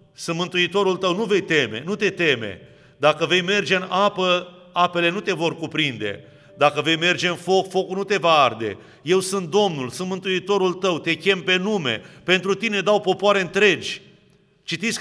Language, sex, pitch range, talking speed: Romanian, male, 155-195 Hz, 175 wpm